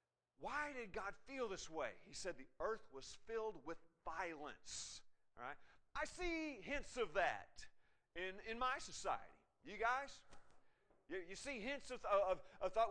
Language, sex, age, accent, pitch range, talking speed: English, male, 40-59, American, 180-255 Hz, 165 wpm